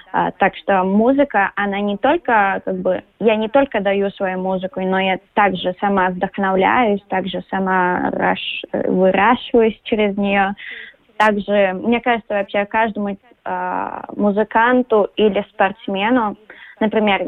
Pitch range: 190-225 Hz